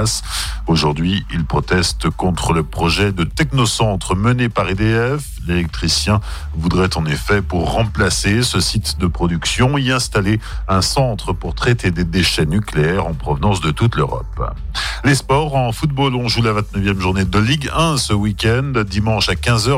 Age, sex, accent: 50-69, male, French